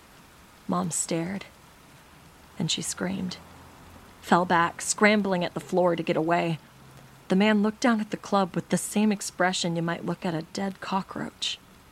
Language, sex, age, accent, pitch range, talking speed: English, female, 30-49, American, 170-200 Hz, 160 wpm